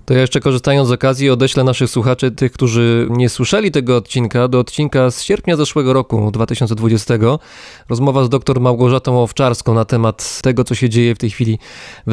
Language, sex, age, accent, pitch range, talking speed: Polish, male, 20-39, native, 115-135 Hz, 185 wpm